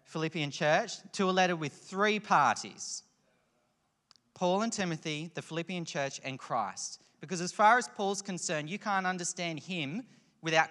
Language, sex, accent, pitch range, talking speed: English, male, Australian, 145-190 Hz, 150 wpm